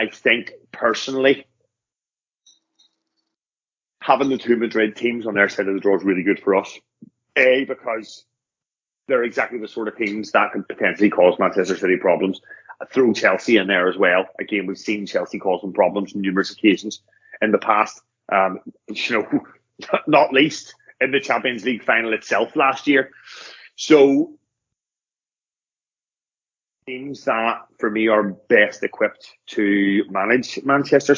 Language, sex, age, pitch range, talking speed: English, male, 30-49, 105-140 Hz, 150 wpm